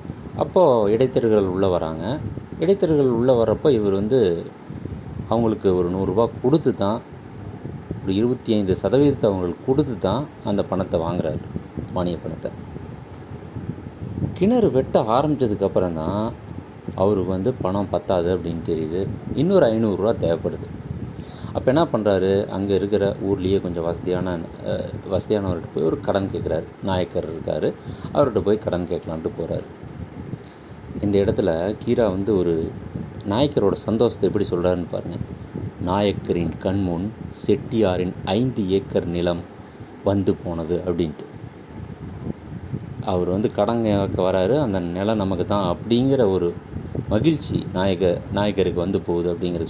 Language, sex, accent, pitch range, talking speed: Tamil, male, native, 90-110 Hz, 115 wpm